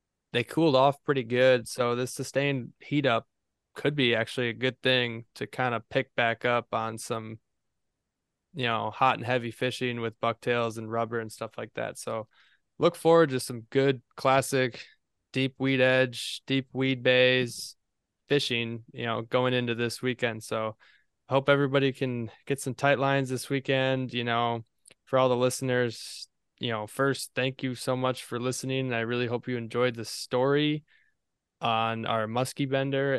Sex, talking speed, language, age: male, 170 wpm, English, 20-39